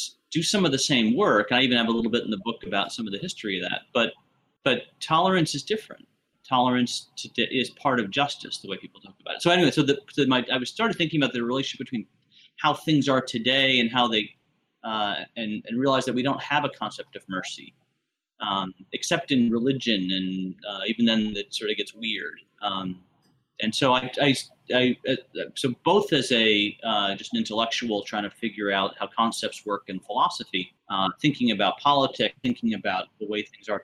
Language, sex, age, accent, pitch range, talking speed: English, male, 30-49, American, 105-140 Hz, 210 wpm